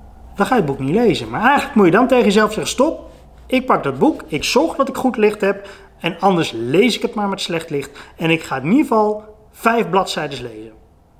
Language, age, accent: Dutch, 30-49, Dutch